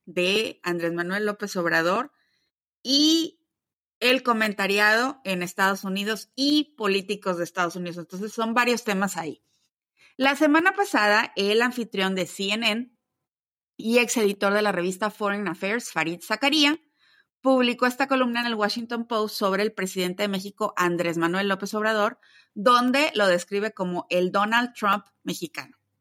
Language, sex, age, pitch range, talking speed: Spanish, female, 30-49, 185-235 Hz, 145 wpm